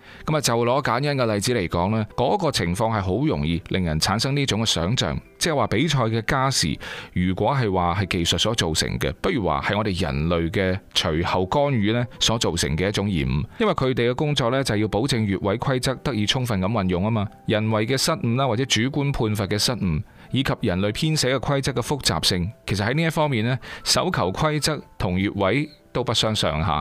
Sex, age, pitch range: male, 30-49, 95-135 Hz